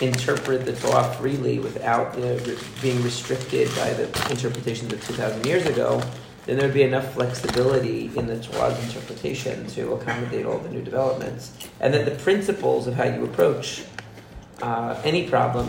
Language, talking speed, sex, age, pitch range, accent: English, 170 wpm, male, 40-59, 120-140 Hz, American